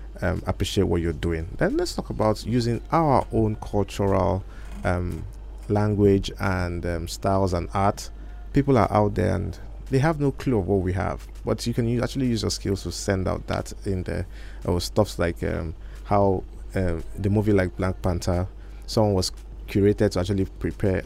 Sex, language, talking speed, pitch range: male, English, 180 wpm, 95-120 Hz